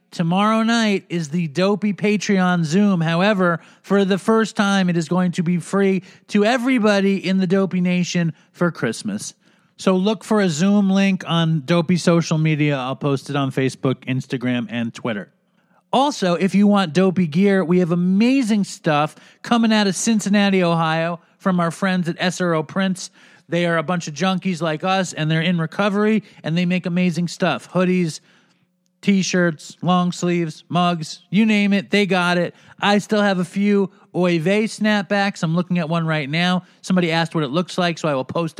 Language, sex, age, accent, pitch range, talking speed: English, male, 40-59, American, 165-200 Hz, 180 wpm